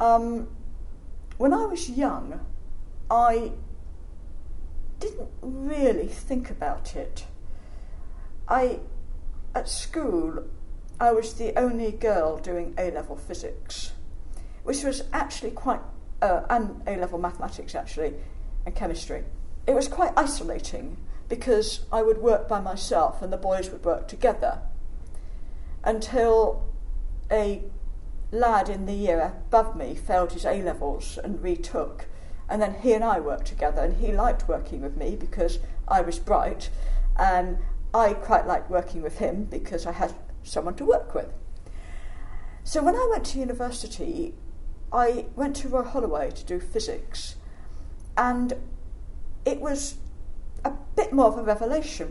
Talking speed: 135 wpm